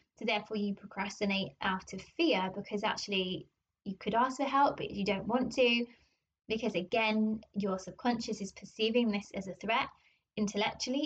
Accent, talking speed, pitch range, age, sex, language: British, 155 wpm, 200-235 Hz, 20-39, female, English